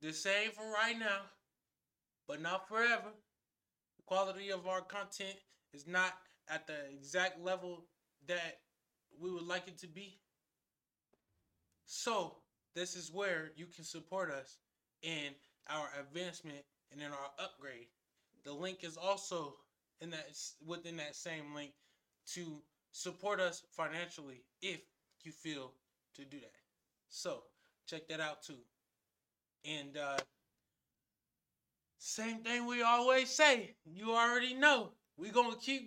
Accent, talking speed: American, 130 wpm